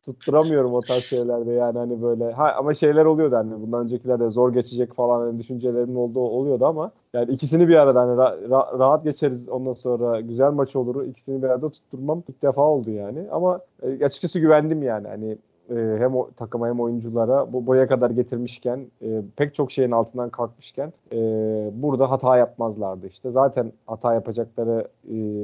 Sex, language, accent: male, Turkish, native